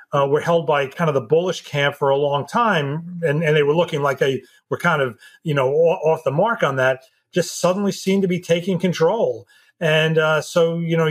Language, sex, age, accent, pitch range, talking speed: English, male, 40-59, American, 145-175 Hz, 230 wpm